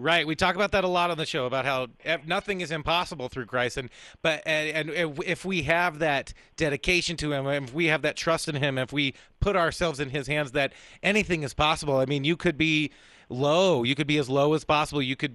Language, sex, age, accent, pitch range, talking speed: English, male, 30-49, American, 140-170 Hz, 240 wpm